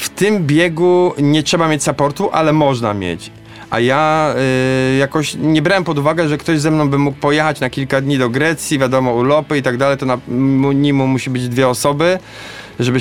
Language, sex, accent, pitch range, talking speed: Polish, male, native, 130-160 Hz, 200 wpm